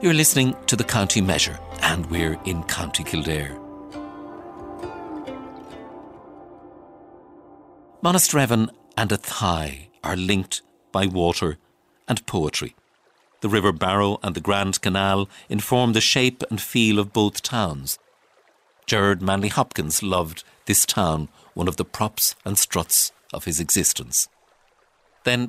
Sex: male